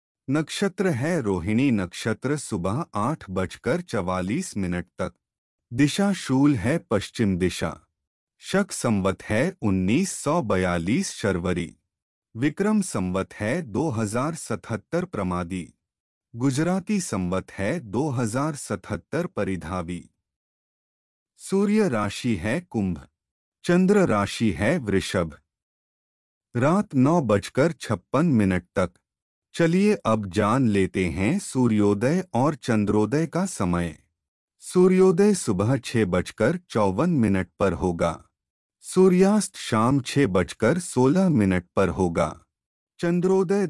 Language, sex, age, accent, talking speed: Hindi, male, 30-49, native, 95 wpm